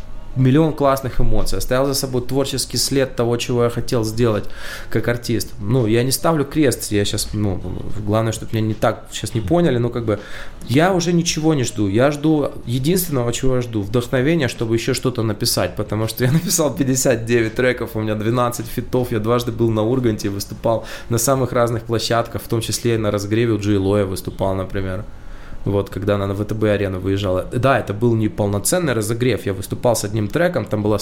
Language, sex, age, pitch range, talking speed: Russian, male, 20-39, 105-130 Hz, 190 wpm